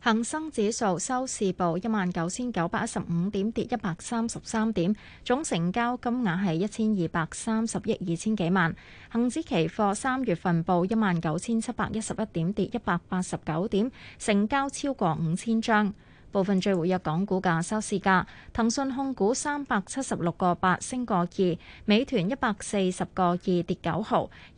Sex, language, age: female, Chinese, 20-39